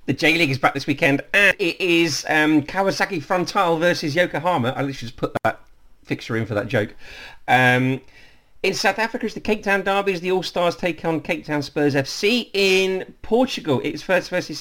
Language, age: English, 40-59